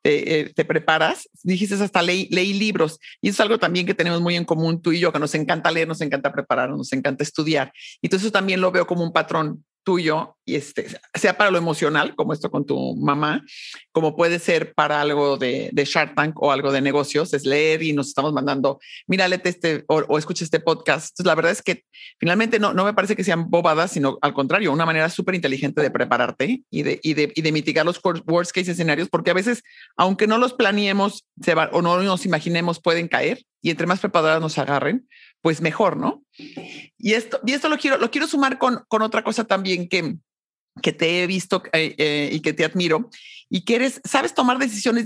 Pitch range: 155-200 Hz